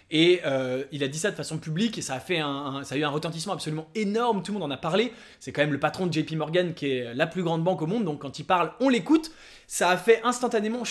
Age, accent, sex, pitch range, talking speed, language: 20-39, French, male, 155-215 Hz, 290 wpm, English